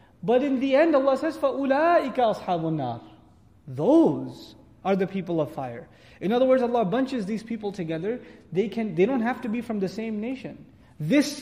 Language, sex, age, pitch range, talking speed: English, male, 30-49, 170-240 Hz, 185 wpm